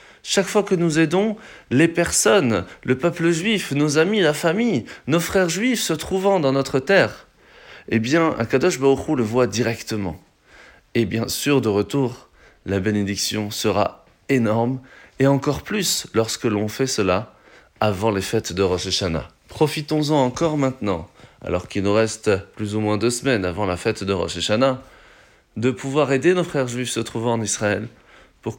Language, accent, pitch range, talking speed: French, French, 110-165 Hz, 170 wpm